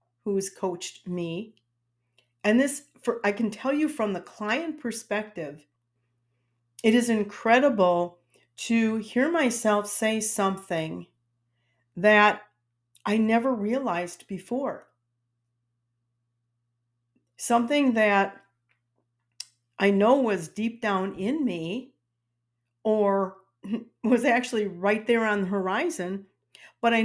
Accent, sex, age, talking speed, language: American, female, 50-69, 100 wpm, English